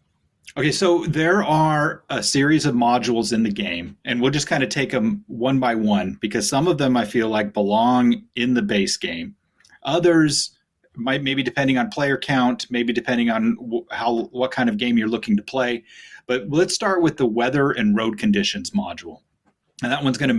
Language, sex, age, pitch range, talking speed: English, male, 30-49, 115-160 Hz, 200 wpm